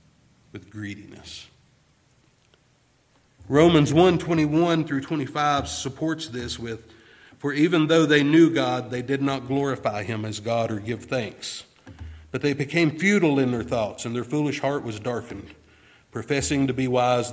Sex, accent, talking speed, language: male, American, 155 wpm, English